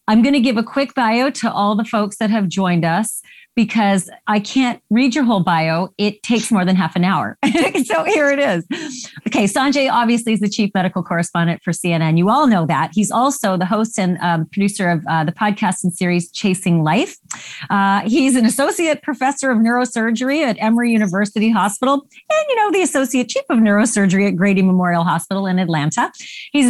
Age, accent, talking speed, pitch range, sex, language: 30-49, American, 200 wpm, 185-250 Hz, female, English